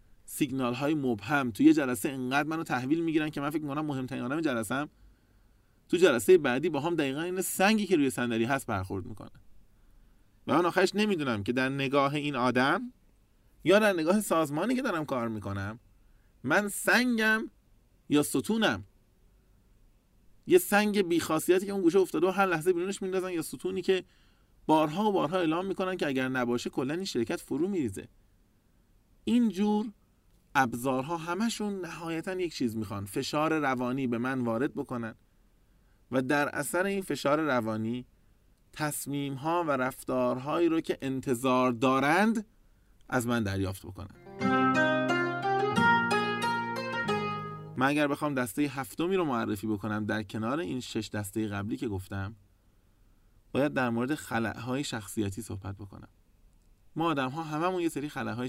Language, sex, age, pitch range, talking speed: Persian, male, 30-49, 105-165 Hz, 145 wpm